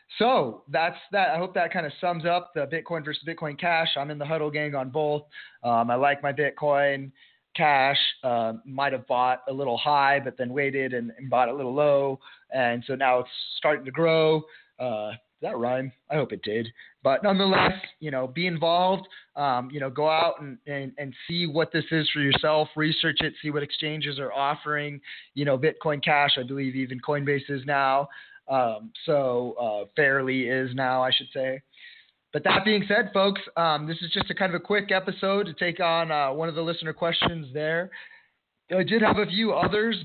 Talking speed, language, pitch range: 200 wpm, English, 135-175 Hz